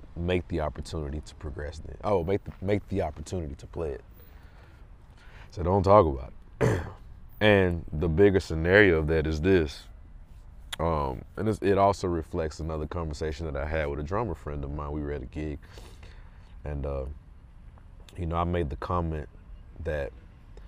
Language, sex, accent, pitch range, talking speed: English, male, American, 75-90 Hz, 170 wpm